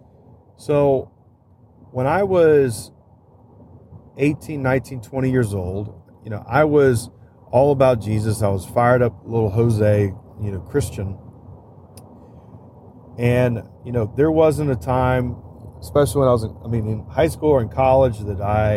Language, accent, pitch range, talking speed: English, American, 105-130 Hz, 150 wpm